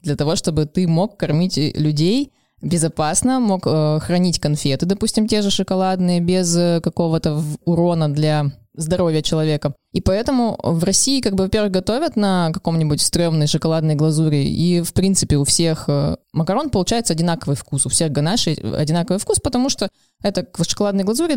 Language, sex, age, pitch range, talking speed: Russian, female, 20-39, 155-195 Hz, 150 wpm